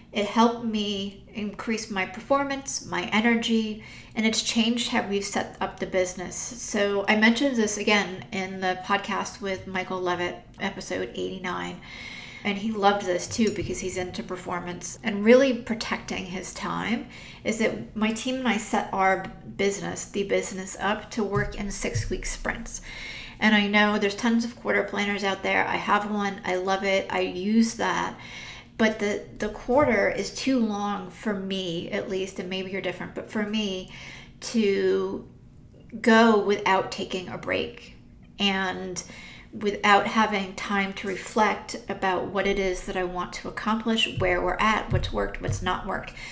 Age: 40-59